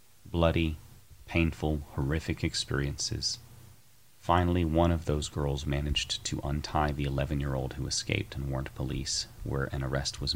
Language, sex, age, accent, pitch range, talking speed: English, male, 30-49, American, 75-105 Hz, 135 wpm